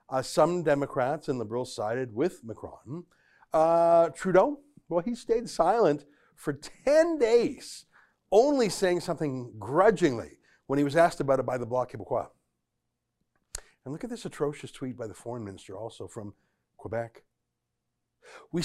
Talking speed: 145 wpm